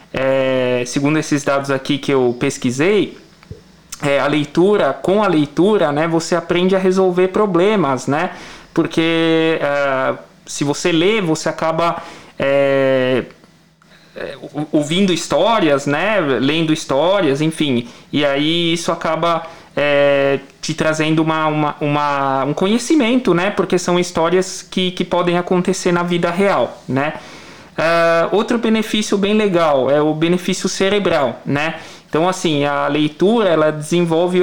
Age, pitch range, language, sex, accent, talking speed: 20-39, 150-185 Hz, Portuguese, male, Brazilian, 125 wpm